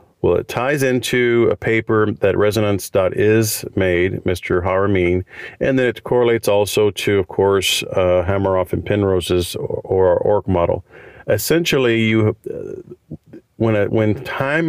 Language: English